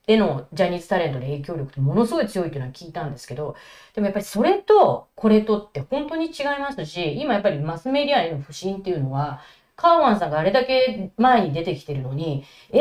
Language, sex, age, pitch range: Japanese, female, 40-59, 155-255 Hz